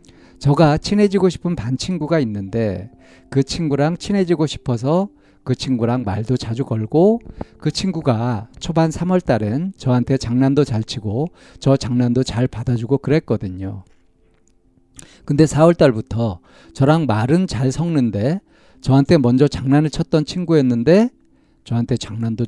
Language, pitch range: Korean, 110-155 Hz